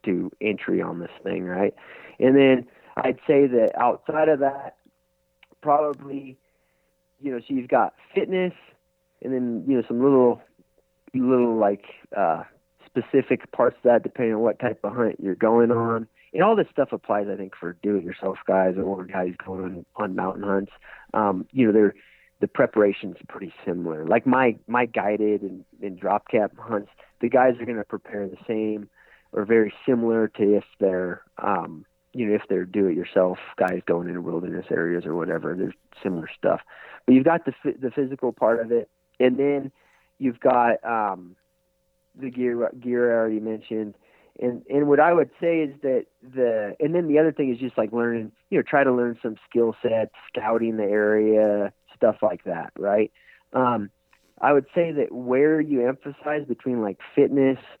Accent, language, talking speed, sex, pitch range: American, English, 175 wpm, male, 100-130 Hz